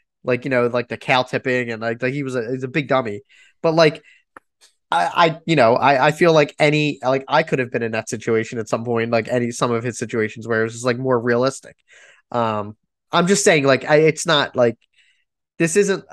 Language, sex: English, male